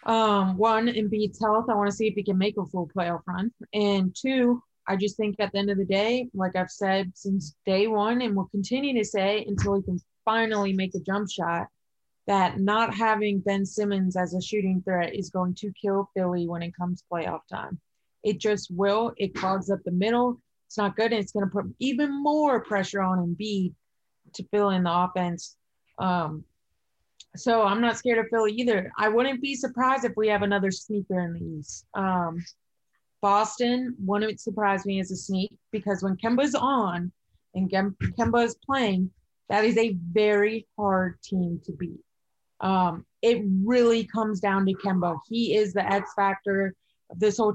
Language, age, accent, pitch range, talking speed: English, 20-39, American, 185-220 Hz, 190 wpm